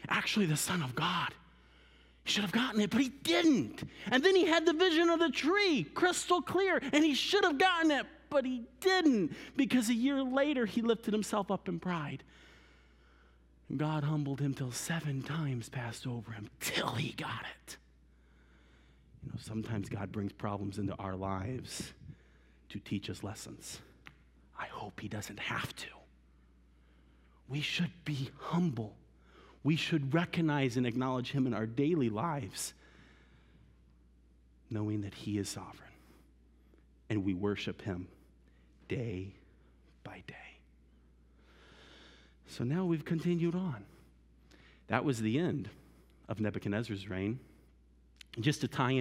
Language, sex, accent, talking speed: English, male, American, 145 wpm